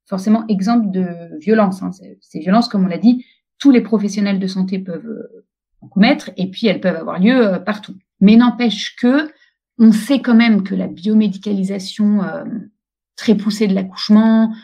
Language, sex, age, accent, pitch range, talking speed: French, female, 30-49, French, 185-230 Hz, 180 wpm